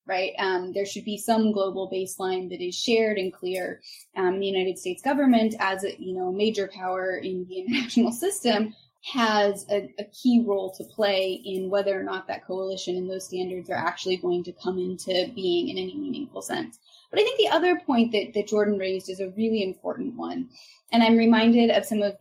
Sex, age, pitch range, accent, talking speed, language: female, 10-29, 190-235 Hz, American, 205 wpm, English